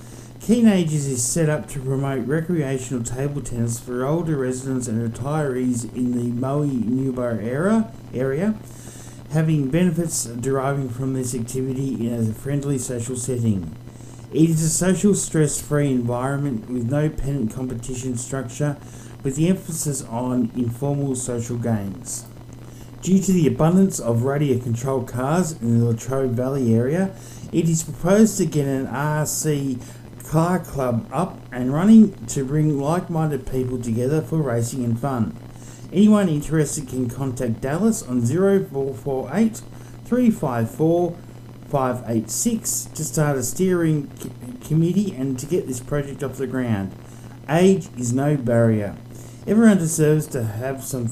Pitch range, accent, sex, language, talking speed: 120-155 Hz, Australian, male, English, 135 wpm